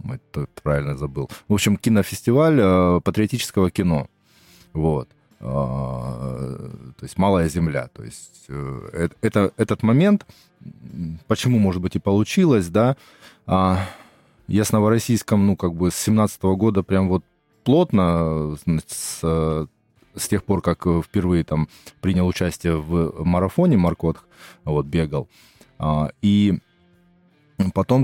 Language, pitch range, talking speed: Russian, 80-105 Hz, 115 wpm